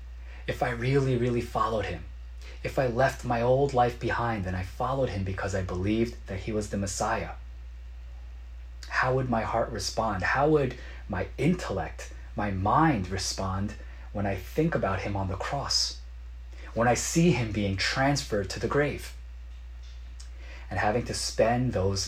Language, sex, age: Korean, male, 30-49